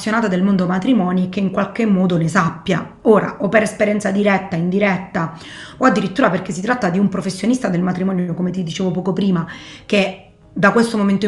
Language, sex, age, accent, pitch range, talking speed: Italian, female, 30-49, native, 185-215 Hz, 180 wpm